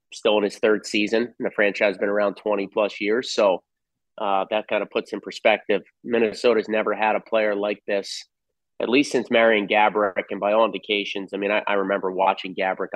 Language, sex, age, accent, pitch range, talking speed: English, male, 30-49, American, 95-105 Hz, 210 wpm